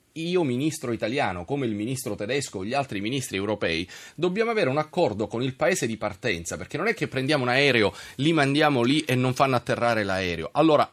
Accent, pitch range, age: native, 125-185 Hz, 30-49